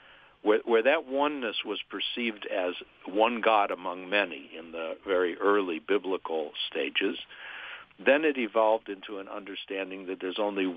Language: English